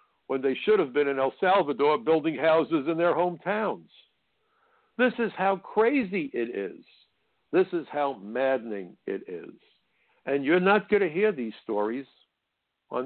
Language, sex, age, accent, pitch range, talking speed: English, male, 60-79, American, 120-170 Hz, 155 wpm